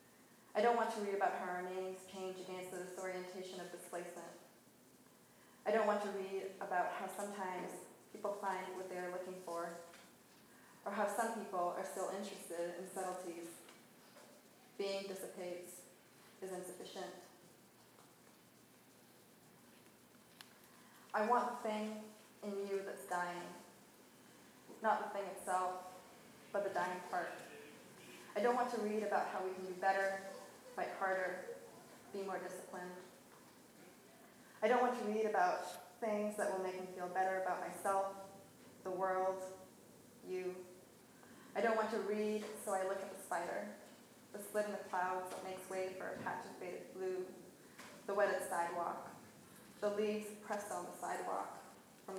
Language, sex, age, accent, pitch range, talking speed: English, female, 20-39, American, 185-205 Hz, 145 wpm